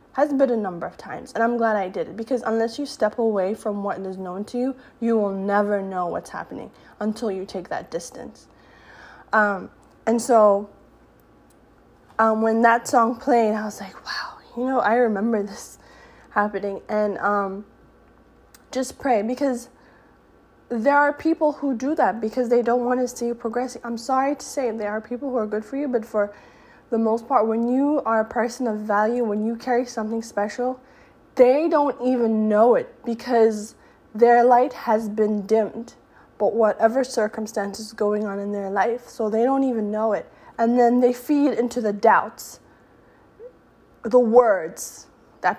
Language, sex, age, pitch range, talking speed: English, female, 10-29, 215-245 Hz, 180 wpm